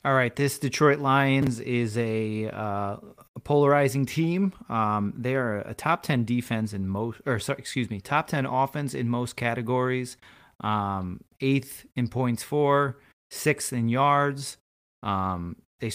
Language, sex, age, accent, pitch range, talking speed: English, male, 30-49, American, 105-135 Hz, 145 wpm